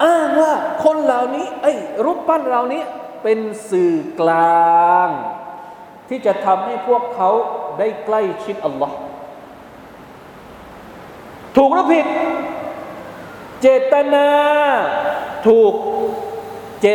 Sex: male